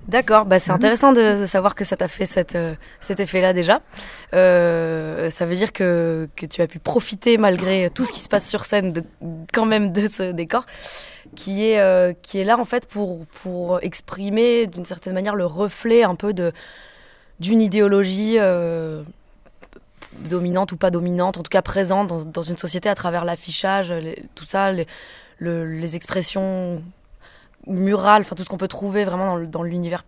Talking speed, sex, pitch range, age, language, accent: 170 wpm, female, 170-195 Hz, 20-39, French, French